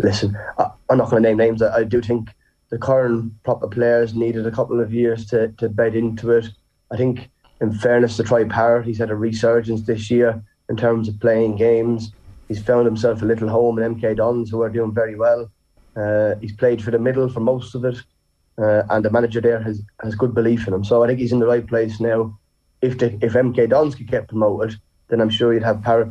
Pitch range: 110-120 Hz